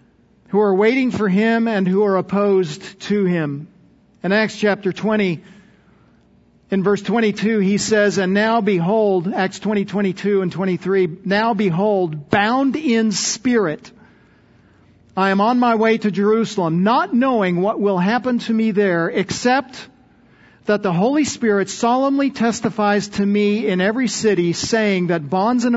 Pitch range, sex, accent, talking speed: 180-215 Hz, male, American, 150 wpm